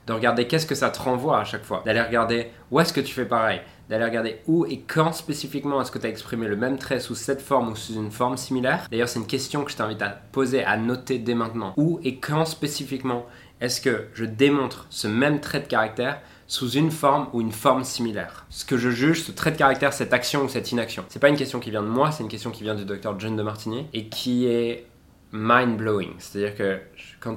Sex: male